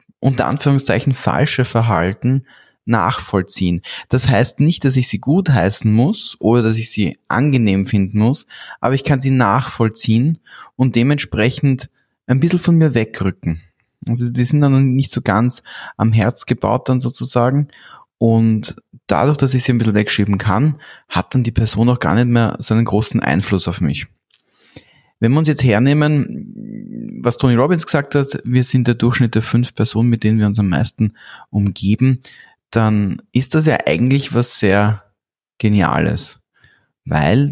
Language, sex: German, male